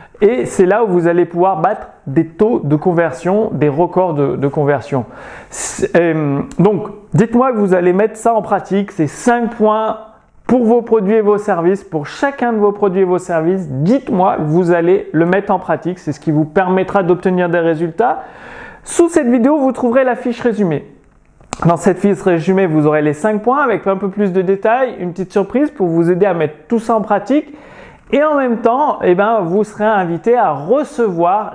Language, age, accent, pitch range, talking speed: French, 30-49, French, 165-225 Hz, 200 wpm